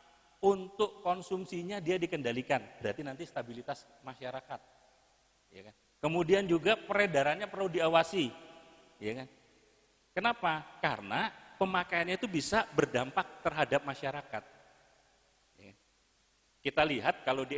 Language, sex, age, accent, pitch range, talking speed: Indonesian, male, 40-59, native, 120-170 Hz, 85 wpm